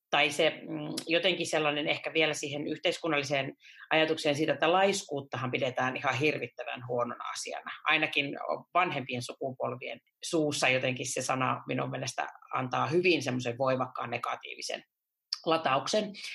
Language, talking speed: Finnish, 115 wpm